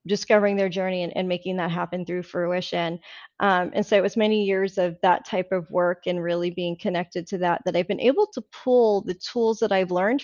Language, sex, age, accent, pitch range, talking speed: English, female, 30-49, American, 185-215 Hz, 230 wpm